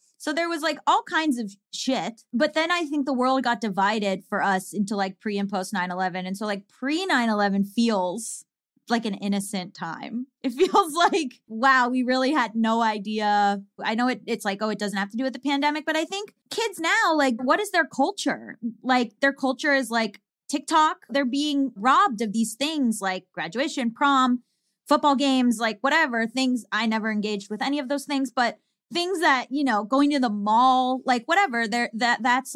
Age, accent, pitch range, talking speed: 10-29, American, 205-275 Hz, 195 wpm